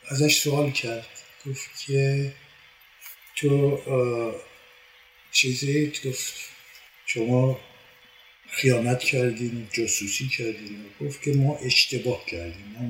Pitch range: 120-140 Hz